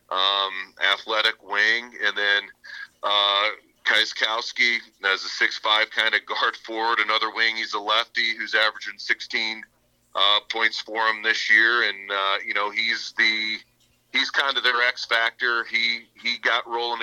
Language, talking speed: English, 155 wpm